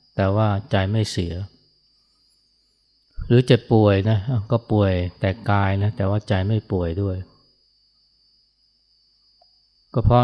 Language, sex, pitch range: Thai, male, 100-125 Hz